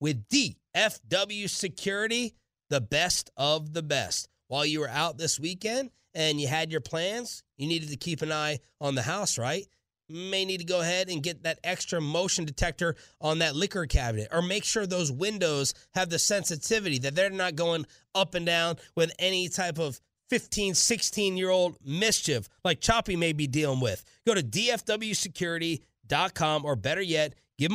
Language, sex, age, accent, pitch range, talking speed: English, male, 30-49, American, 140-180 Hz, 170 wpm